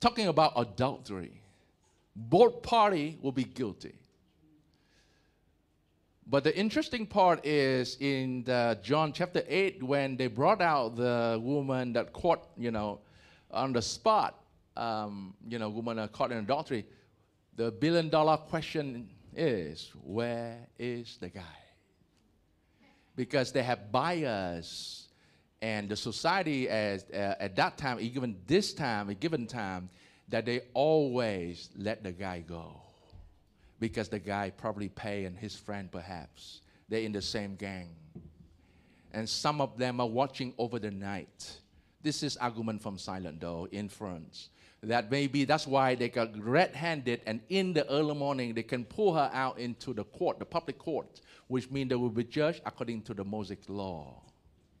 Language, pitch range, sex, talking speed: English, 95-135 Hz, male, 145 wpm